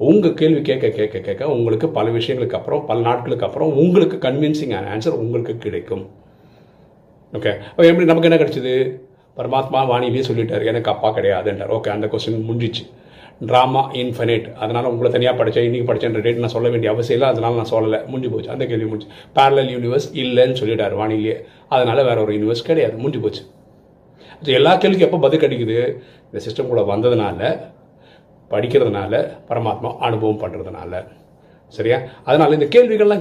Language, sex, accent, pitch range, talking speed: Tamil, male, native, 115-150 Hz, 60 wpm